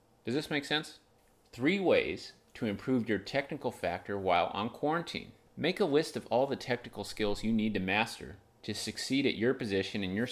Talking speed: 190 wpm